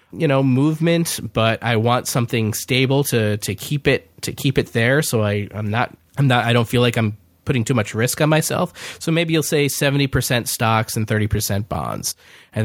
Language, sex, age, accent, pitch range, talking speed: English, male, 20-39, American, 110-140 Hz, 205 wpm